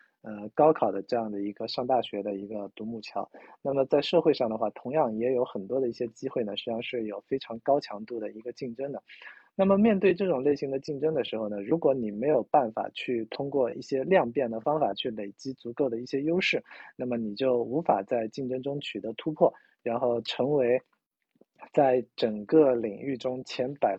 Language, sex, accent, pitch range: Chinese, male, native, 110-135 Hz